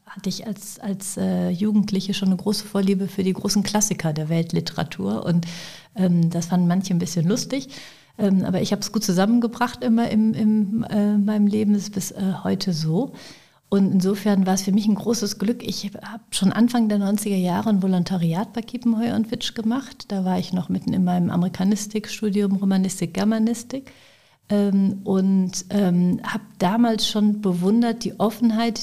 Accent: German